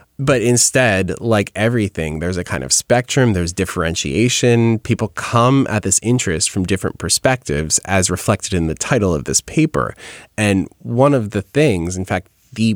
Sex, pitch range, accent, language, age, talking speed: male, 95-115 Hz, American, English, 20-39, 165 wpm